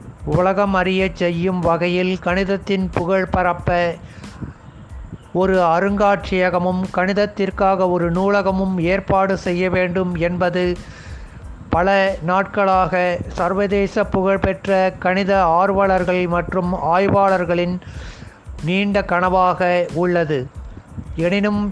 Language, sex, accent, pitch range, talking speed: Tamil, male, native, 180-200 Hz, 75 wpm